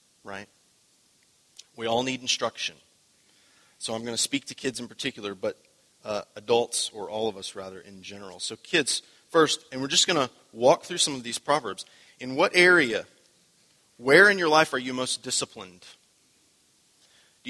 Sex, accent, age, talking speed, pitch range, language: male, American, 30-49, 170 wpm, 115-135 Hz, English